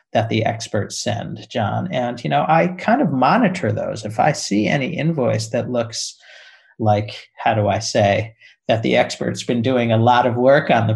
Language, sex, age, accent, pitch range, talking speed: English, male, 50-69, American, 110-155 Hz, 195 wpm